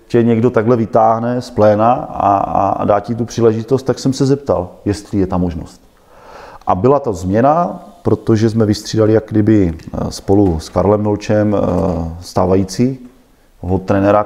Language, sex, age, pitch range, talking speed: Czech, male, 30-49, 90-105 Hz, 150 wpm